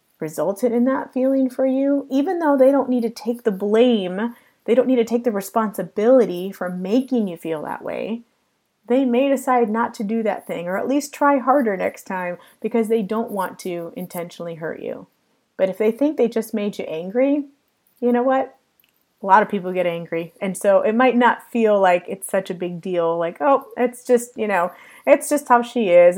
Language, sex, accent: English, female, American